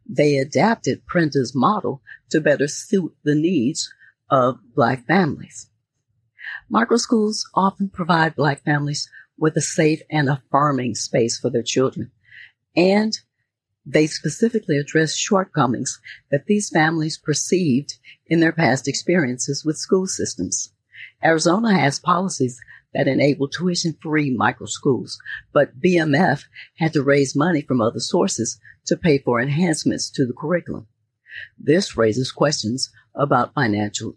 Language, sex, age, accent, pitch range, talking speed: English, female, 40-59, American, 125-165 Hz, 125 wpm